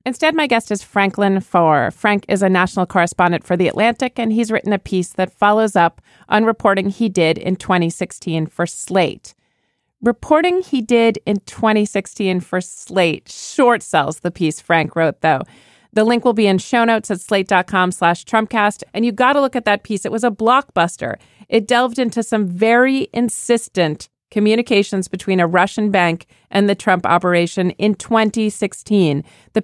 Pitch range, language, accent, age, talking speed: 185-235 Hz, English, American, 40-59, 170 wpm